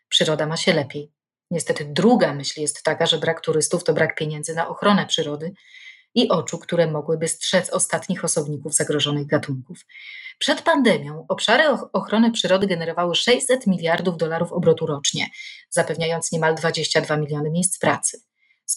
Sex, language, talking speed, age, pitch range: female, Polish, 145 wpm, 30-49, 155-180 Hz